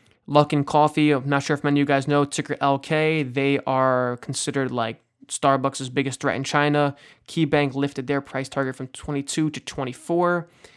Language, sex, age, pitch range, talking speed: English, male, 20-39, 130-145 Hz, 175 wpm